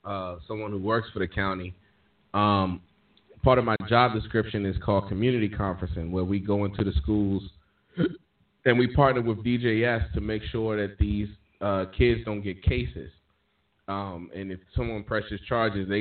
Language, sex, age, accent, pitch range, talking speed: English, male, 20-39, American, 95-110 Hz, 170 wpm